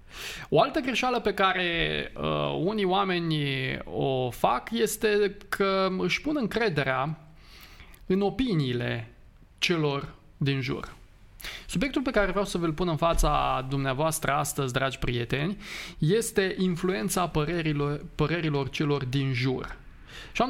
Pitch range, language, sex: 135-190 Hz, Romanian, male